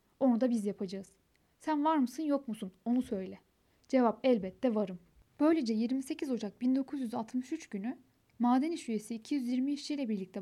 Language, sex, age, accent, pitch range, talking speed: Turkish, female, 10-29, native, 205-270 Hz, 145 wpm